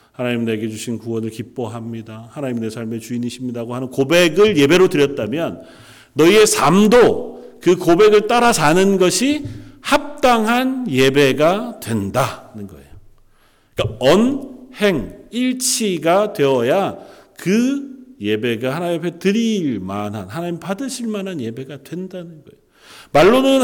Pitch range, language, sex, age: 120-200 Hz, Korean, male, 40-59